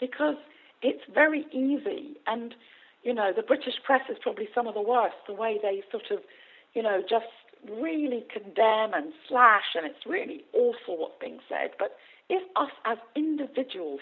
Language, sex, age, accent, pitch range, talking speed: English, female, 50-69, British, 230-345 Hz, 170 wpm